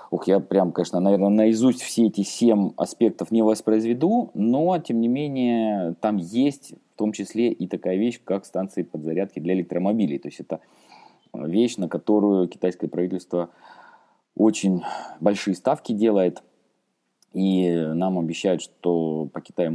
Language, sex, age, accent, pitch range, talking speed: Russian, male, 20-39, native, 85-100 Hz, 145 wpm